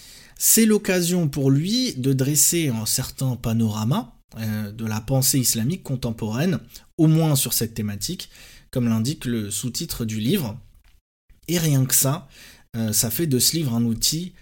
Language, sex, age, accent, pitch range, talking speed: French, male, 20-39, French, 115-150 Hz, 150 wpm